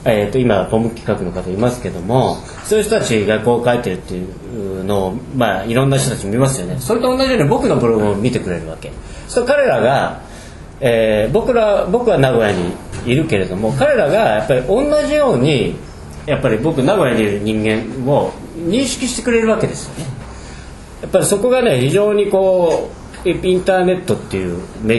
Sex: male